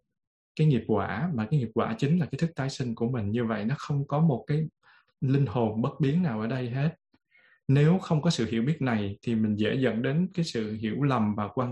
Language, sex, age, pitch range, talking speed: Vietnamese, male, 20-39, 115-145 Hz, 245 wpm